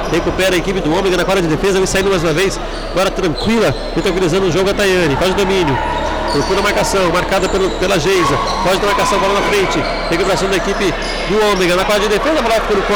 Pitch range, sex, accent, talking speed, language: 180-205 Hz, male, Brazilian, 225 wpm, Portuguese